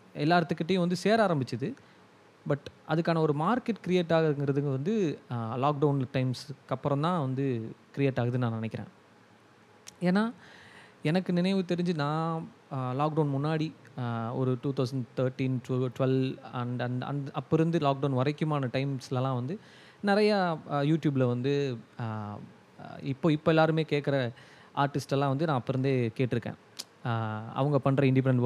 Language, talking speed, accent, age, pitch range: Tamil, 120 wpm, native, 20-39, 130-170 Hz